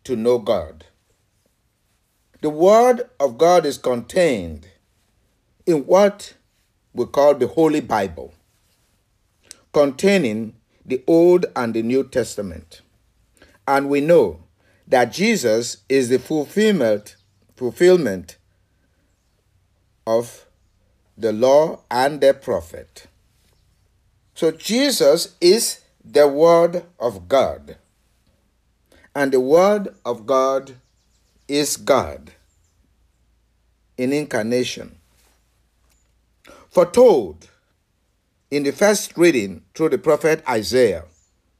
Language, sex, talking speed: English, male, 90 wpm